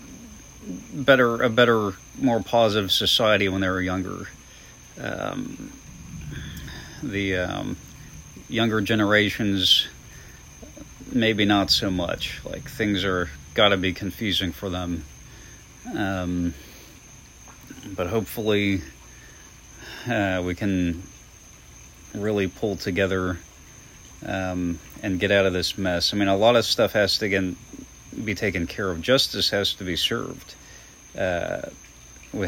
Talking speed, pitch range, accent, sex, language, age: 120 wpm, 90-105 Hz, American, male, English, 40-59